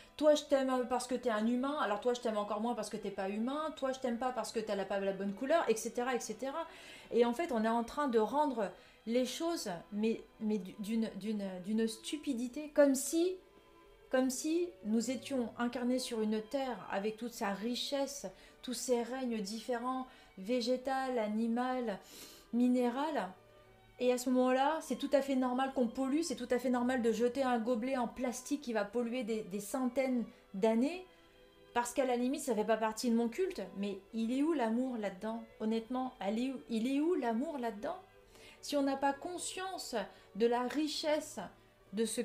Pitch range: 225-275 Hz